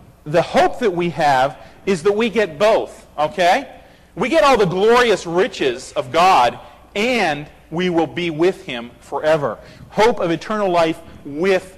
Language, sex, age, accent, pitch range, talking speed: English, male, 40-59, American, 150-235 Hz, 160 wpm